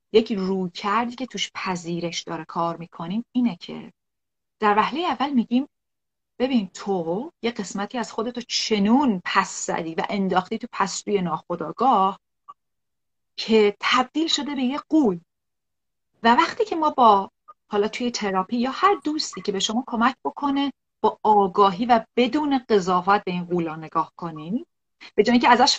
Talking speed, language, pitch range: 155 wpm, Persian, 195-255 Hz